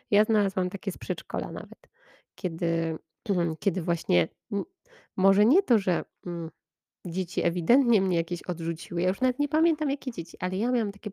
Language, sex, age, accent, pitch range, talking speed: Polish, female, 20-39, native, 175-215 Hz, 155 wpm